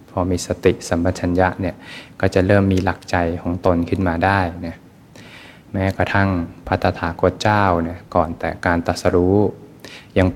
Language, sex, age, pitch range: Thai, male, 20-39, 85-100 Hz